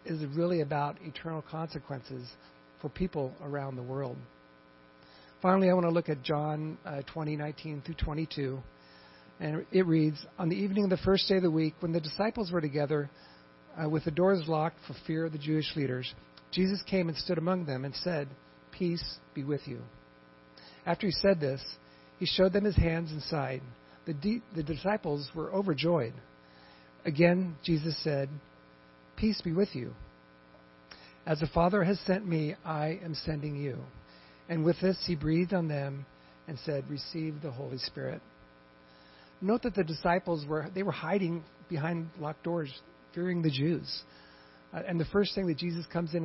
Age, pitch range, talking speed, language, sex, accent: 50-69, 125-170 Hz, 170 wpm, English, male, American